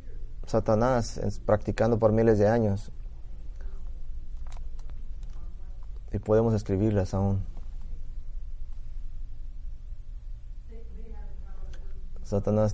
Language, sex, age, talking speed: English, male, 30-49, 55 wpm